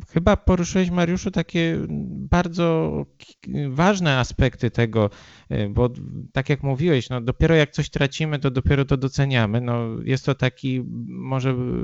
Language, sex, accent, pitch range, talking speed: Polish, male, native, 120-155 Hz, 120 wpm